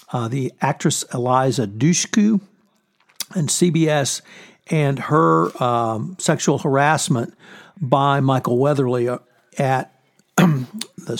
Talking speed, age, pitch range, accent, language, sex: 90 wpm, 60-79, 120-165 Hz, American, English, male